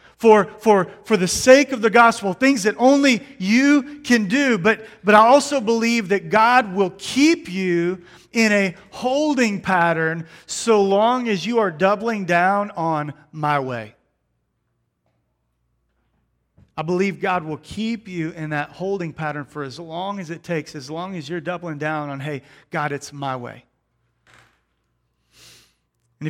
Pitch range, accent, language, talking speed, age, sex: 150-200 Hz, American, English, 155 wpm, 40-59, male